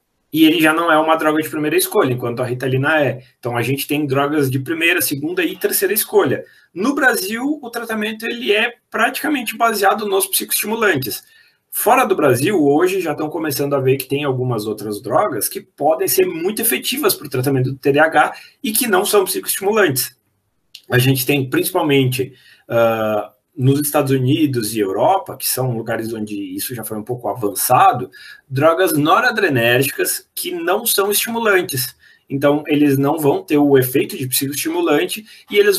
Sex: male